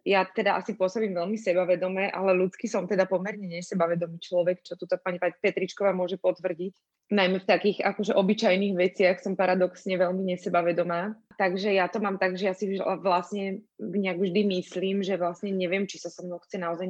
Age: 20-39